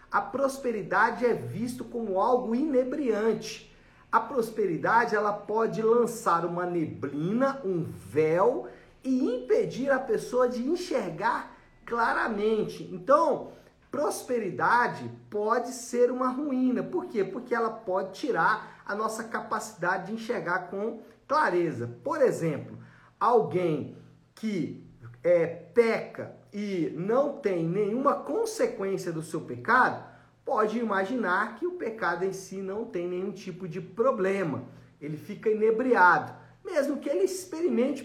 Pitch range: 180-240 Hz